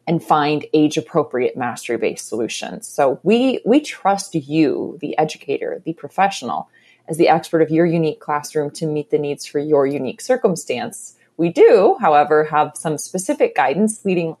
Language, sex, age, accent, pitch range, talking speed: English, female, 30-49, American, 155-225 Hz, 155 wpm